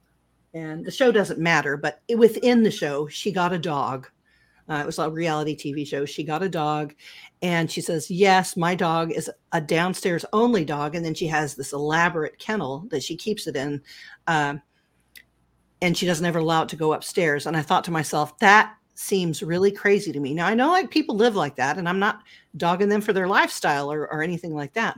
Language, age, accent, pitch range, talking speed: English, 40-59, American, 150-205 Hz, 210 wpm